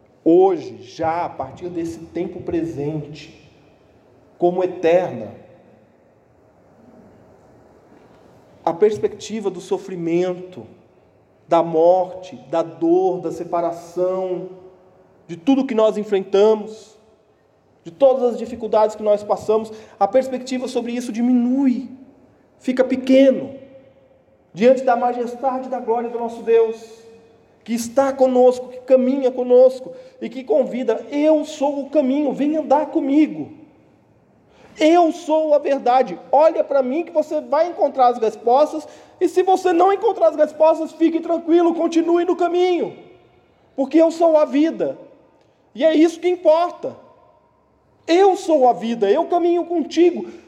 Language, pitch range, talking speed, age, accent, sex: Portuguese, 200-310 Hz, 125 wpm, 40-59, Brazilian, male